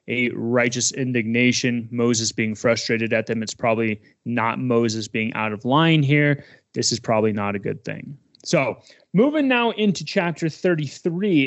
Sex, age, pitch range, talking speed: male, 20-39, 125-170 Hz, 155 wpm